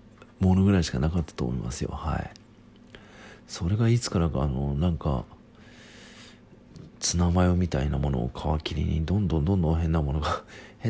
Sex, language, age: male, Japanese, 40-59